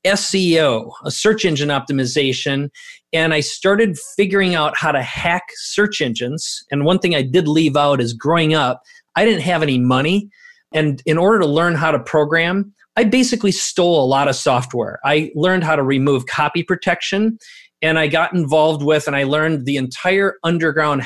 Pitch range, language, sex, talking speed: 140-180 Hz, English, male, 180 wpm